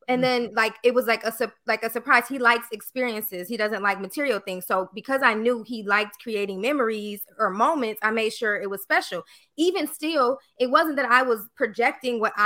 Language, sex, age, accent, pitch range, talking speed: English, female, 20-39, American, 210-255 Hz, 205 wpm